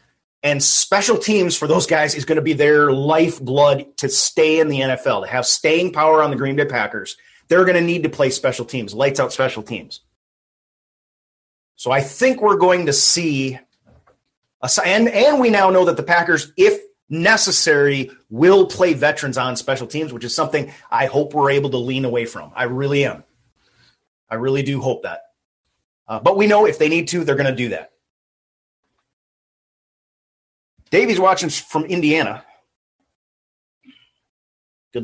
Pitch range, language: 130-165 Hz, English